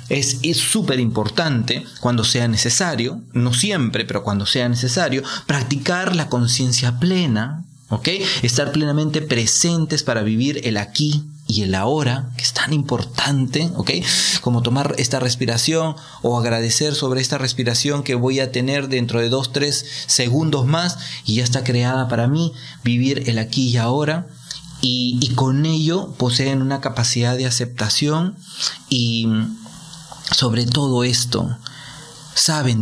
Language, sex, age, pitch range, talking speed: Spanish, male, 30-49, 120-155 Hz, 140 wpm